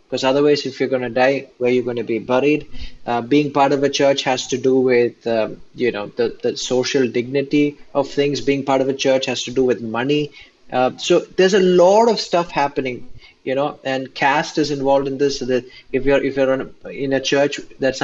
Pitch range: 130-155 Hz